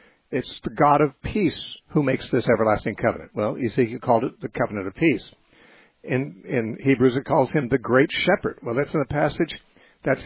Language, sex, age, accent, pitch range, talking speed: English, male, 60-79, American, 125-155 Hz, 195 wpm